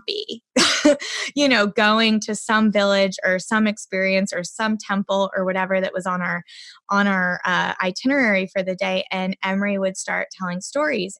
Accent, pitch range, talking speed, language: American, 185-210 Hz, 170 wpm, English